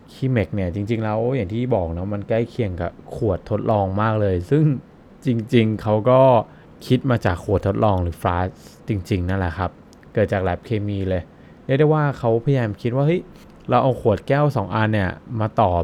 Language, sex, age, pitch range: Thai, male, 20-39, 95-125 Hz